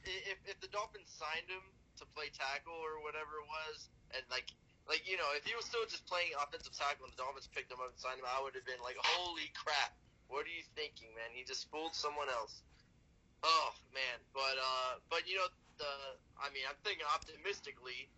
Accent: American